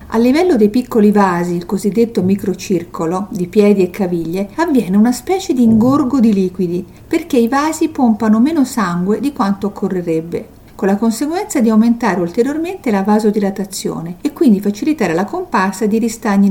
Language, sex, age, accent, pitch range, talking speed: Italian, female, 50-69, native, 180-240 Hz, 155 wpm